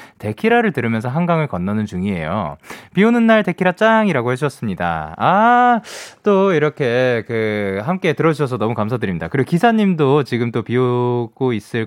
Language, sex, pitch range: Korean, male, 105-180 Hz